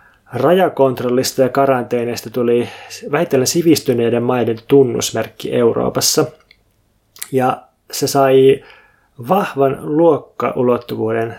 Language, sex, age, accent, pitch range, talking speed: Finnish, male, 20-39, native, 120-140 Hz, 75 wpm